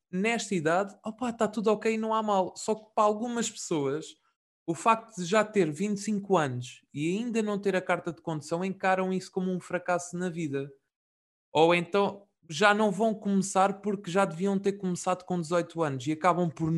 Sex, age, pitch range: male, 20-39, 160-195 Hz